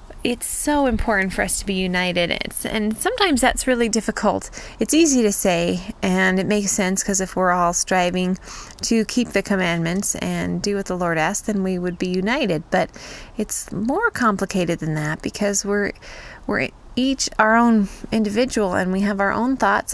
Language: English